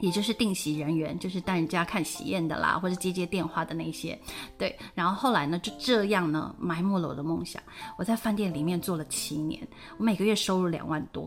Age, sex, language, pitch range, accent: 30-49, female, Chinese, 170-235 Hz, native